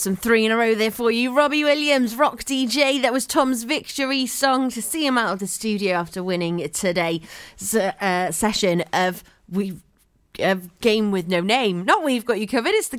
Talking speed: 200 wpm